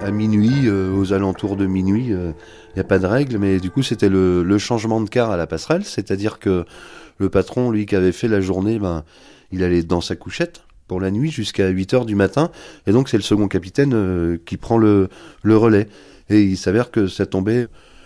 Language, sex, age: French, male, 30-49